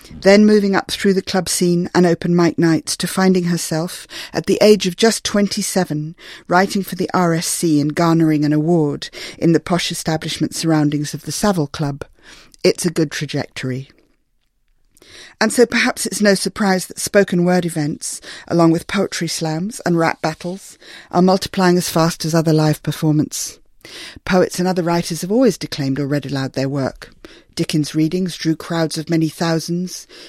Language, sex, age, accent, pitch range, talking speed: English, female, 50-69, British, 155-185 Hz, 170 wpm